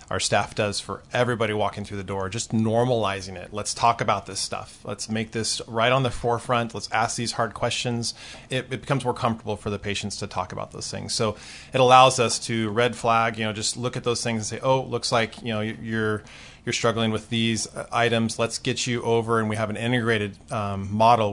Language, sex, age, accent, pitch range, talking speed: English, male, 20-39, American, 105-120 Hz, 230 wpm